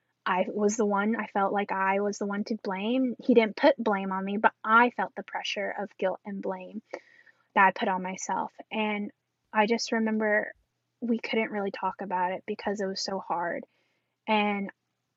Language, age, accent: English, 10-29, American